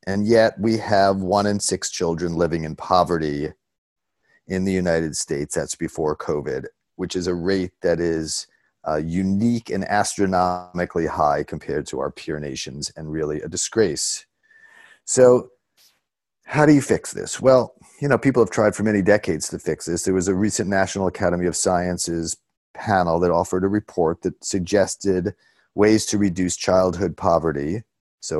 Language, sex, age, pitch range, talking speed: English, male, 40-59, 85-100 Hz, 165 wpm